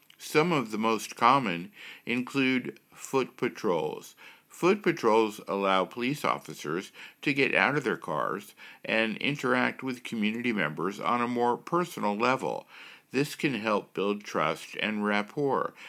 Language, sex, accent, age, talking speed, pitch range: English, male, American, 60-79, 135 wpm, 105-130 Hz